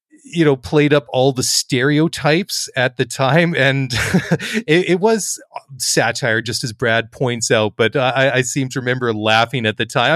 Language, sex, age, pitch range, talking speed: English, male, 30-49, 110-130 Hz, 175 wpm